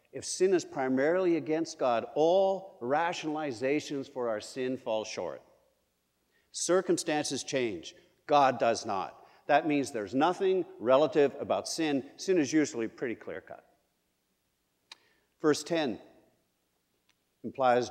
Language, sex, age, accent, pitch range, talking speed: English, male, 50-69, American, 110-150 Hz, 110 wpm